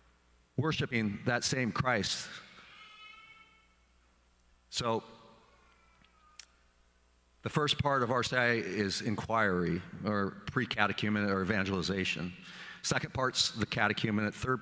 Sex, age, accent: male, 50-69, American